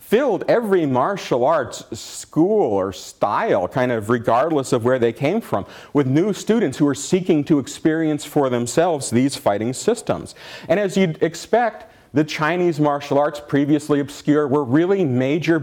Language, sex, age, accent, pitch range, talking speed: English, male, 40-59, American, 115-150 Hz, 155 wpm